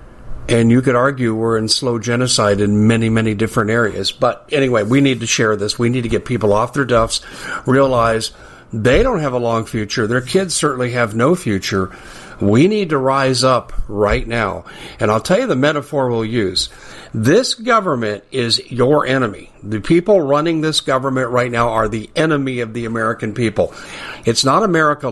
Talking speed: 185 wpm